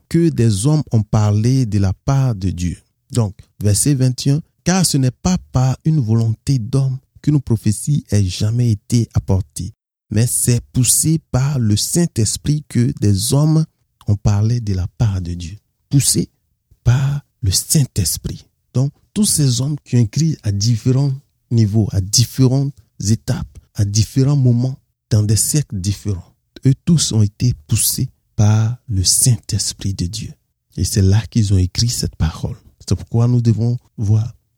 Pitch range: 105-130 Hz